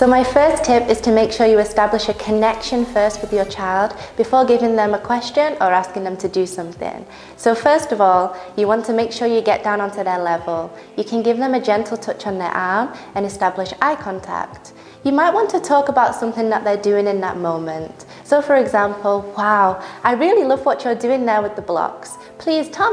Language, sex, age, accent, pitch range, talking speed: English, female, 20-39, British, 200-255 Hz, 220 wpm